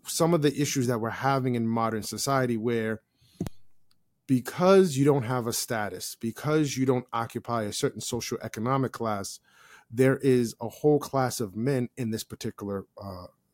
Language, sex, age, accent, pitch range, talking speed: English, male, 30-49, American, 110-130 Hz, 160 wpm